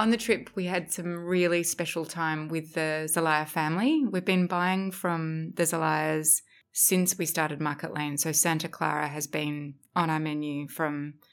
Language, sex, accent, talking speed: English, female, Australian, 175 wpm